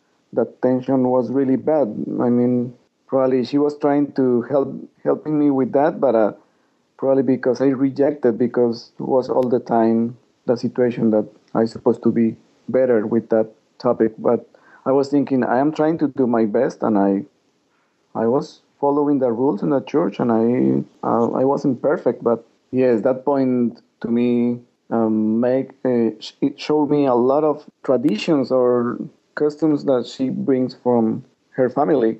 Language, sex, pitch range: English, male, 115-130 Hz